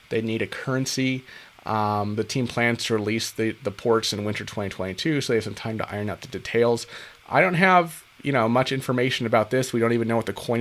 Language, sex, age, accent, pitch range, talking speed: English, male, 30-49, American, 105-130 Hz, 240 wpm